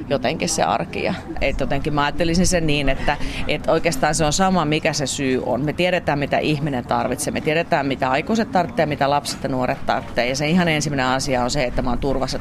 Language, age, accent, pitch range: Finnish, 30-49, native, 140-170 Hz